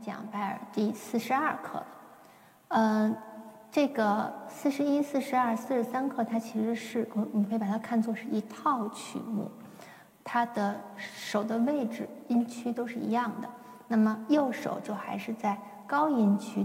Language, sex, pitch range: Chinese, female, 205-245 Hz